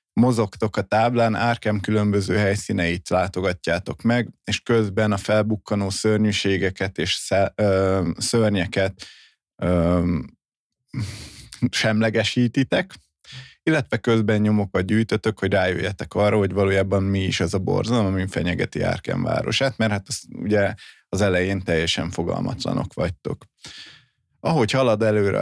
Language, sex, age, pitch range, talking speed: Hungarian, male, 20-39, 95-110 Hz, 105 wpm